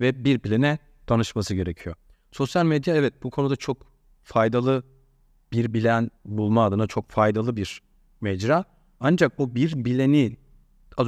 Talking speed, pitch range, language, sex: 135 wpm, 105-140 Hz, Turkish, male